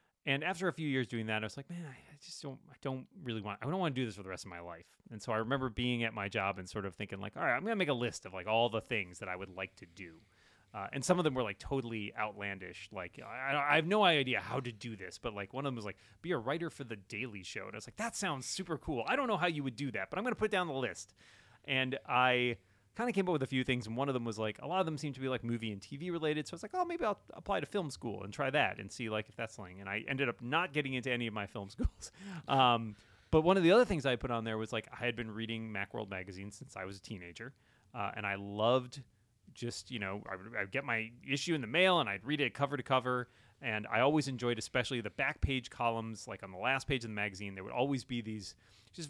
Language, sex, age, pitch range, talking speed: English, male, 30-49, 105-140 Hz, 305 wpm